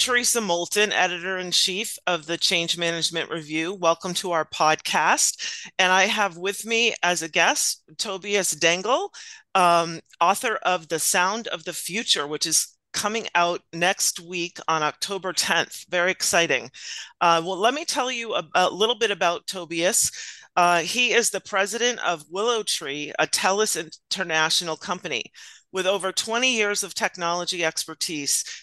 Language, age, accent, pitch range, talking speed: English, 40-59, American, 165-205 Hz, 150 wpm